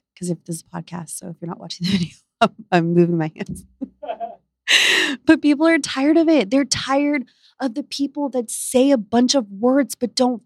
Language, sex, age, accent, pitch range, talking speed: English, female, 20-39, American, 195-280 Hz, 205 wpm